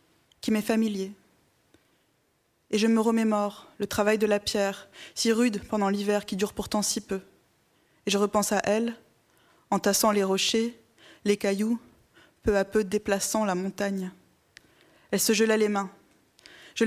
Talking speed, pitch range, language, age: 155 wpm, 200-225 Hz, French, 20-39